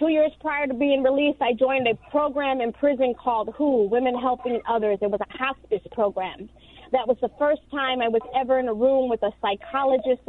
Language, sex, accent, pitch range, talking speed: English, female, American, 220-255 Hz, 210 wpm